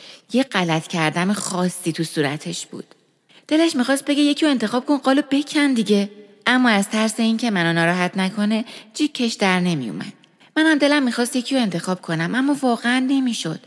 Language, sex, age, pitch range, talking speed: Persian, female, 30-49, 180-245 Hz, 165 wpm